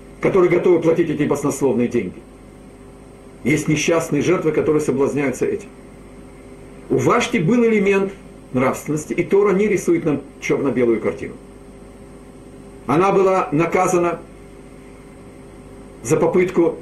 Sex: male